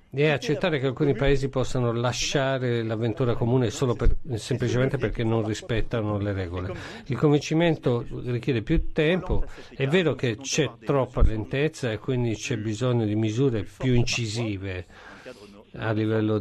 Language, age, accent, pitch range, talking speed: Italian, 50-69, native, 110-135 Hz, 140 wpm